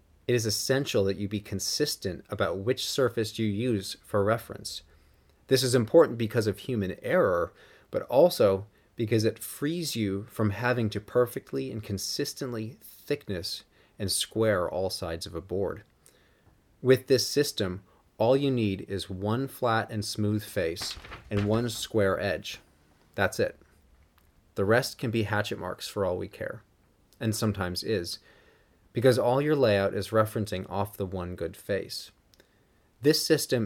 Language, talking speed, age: English, 150 wpm, 30-49